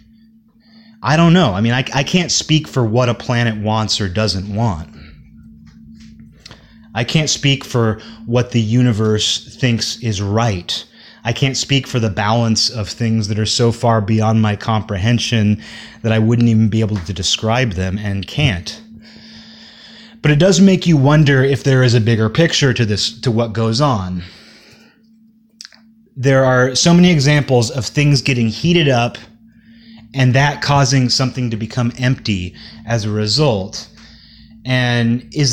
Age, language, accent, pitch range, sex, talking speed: 30-49, English, American, 110-155 Hz, male, 155 wpm